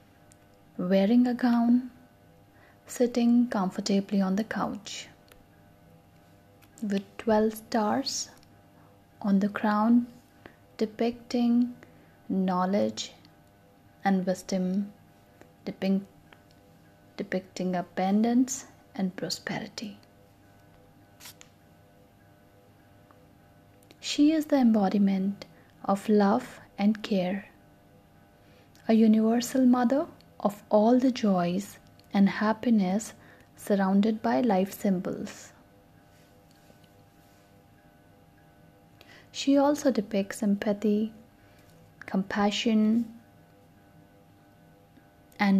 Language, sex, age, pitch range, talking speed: English, female, 20-39, 175-230 Hz, 65 wpm